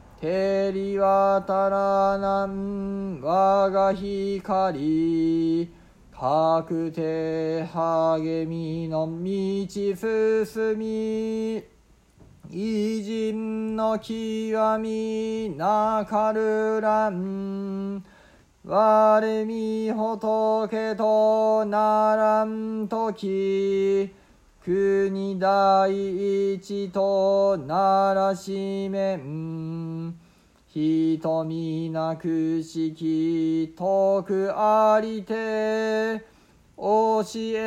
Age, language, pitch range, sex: 40-59, Japanese, 190-220 Hz, male